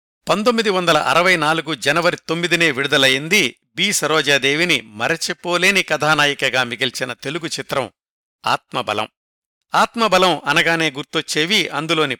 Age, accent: 60-79, native